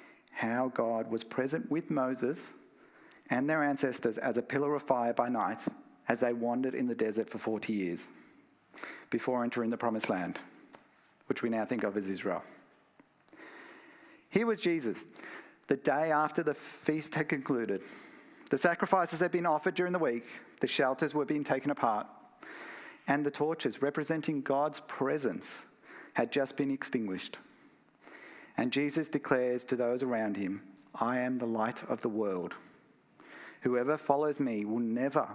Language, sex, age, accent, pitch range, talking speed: English, male, 40-59, Australian, 120-155 Hz, 155 wpm